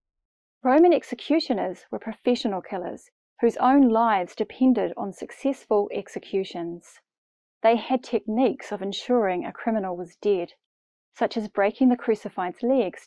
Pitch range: 205-265 Hz